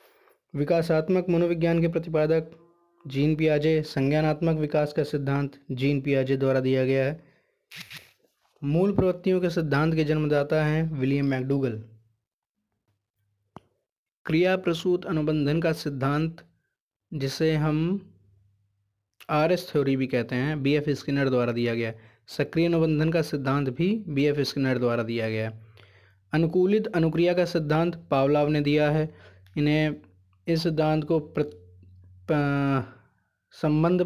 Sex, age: male, 20-39